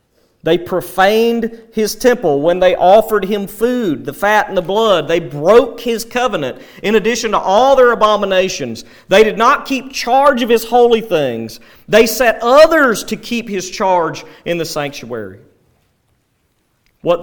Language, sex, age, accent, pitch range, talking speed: English, male, 40-59, American, 140-210 Hz, 155 wpm